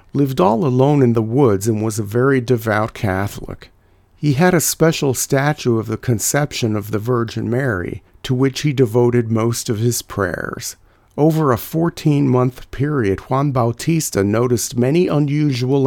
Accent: American